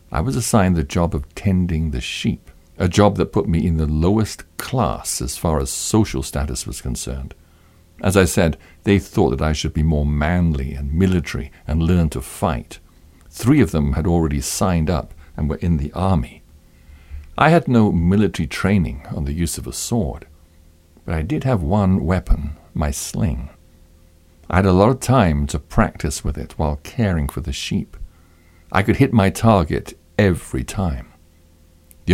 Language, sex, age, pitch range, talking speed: English, male, 60-79, 75-90 Hz, 180 wpm